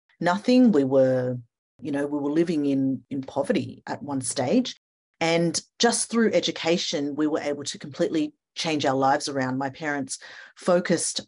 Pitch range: 140-170 Hz